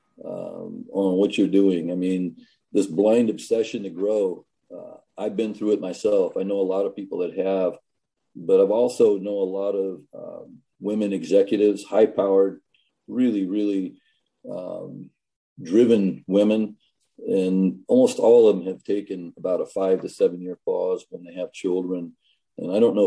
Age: 40-59